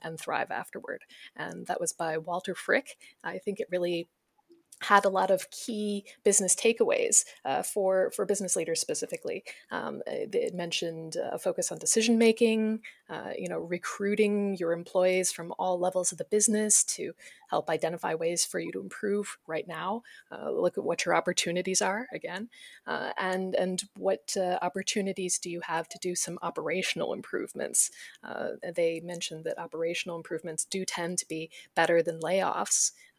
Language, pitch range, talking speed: English, 170-210 Hz, 165 wpm